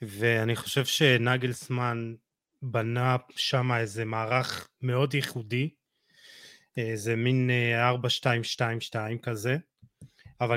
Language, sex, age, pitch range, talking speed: Hebrew, male, 20-39, 125-155 Hz, 80 wpm